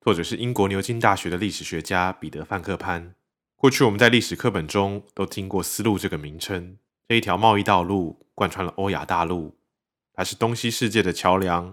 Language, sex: Chinese, male